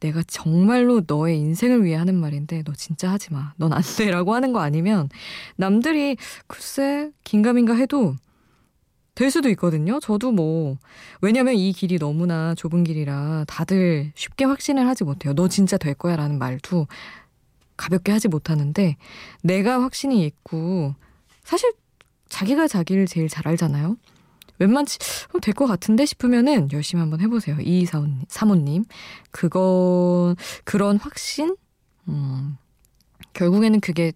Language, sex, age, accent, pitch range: Korean, female, 20-39, native, 150-200 Hz